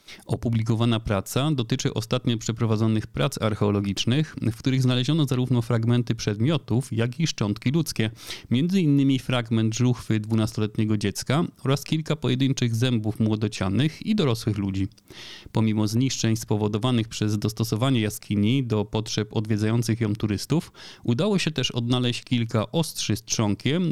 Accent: native